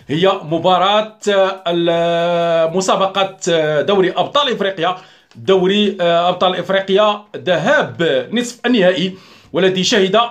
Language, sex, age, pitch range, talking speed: Arabic, male, 40-59, 180-225 Hz, 80 wpm